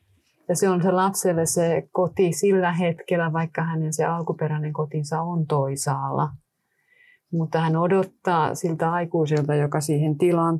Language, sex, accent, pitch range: Finnish, female, native, 150-175 Hz